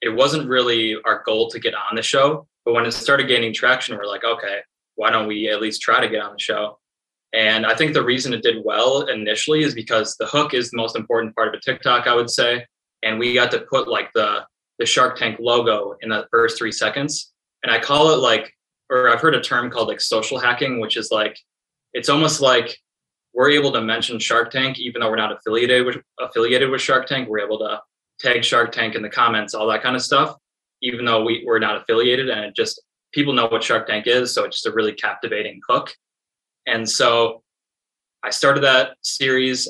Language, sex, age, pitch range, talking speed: English, male, 20-39, 110-130 Hz, 225 wpm